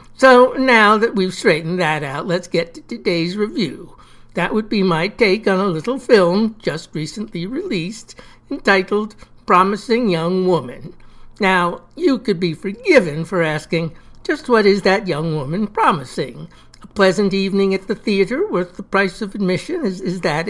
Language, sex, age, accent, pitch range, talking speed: English, male, 60-79, American, 170-210 Hz, 165 wpm